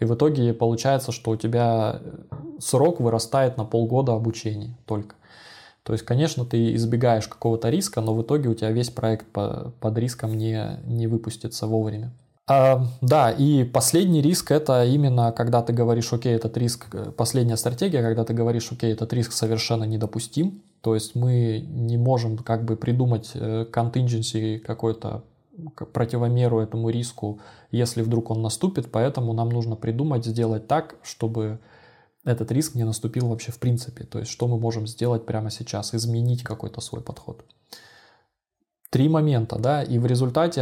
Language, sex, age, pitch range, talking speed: Russian, male, 20-39, 110-125 Hz, 155 wpm